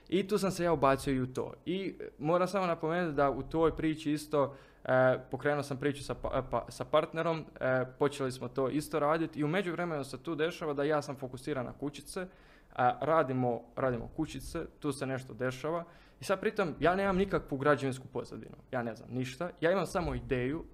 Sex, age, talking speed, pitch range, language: male, 20-39, 205 wpm, 130-160 Hz, Croatian